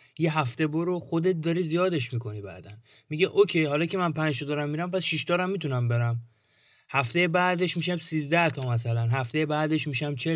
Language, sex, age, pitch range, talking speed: Persian, male, 30-49, 125-165 Hz, 185 wpm